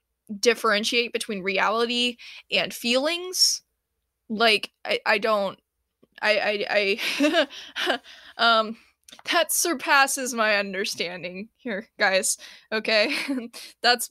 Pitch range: 210-275 Hz